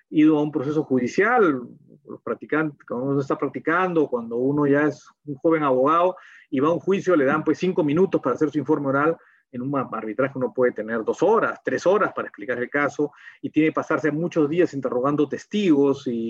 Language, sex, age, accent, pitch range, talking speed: Spanish, male, 40-59, Mexican, 135-185 Hz, 205 wpm